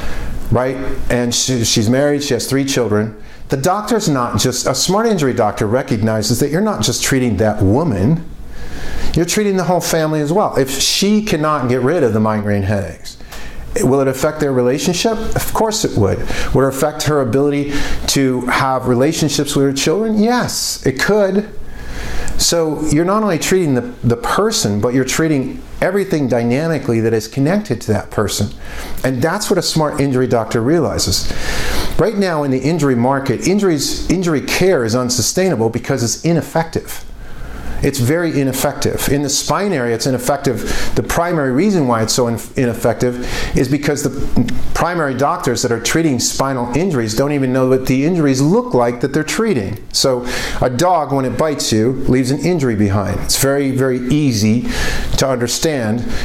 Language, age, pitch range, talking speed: English, 40-59, 120-155 Hz, 170 wpm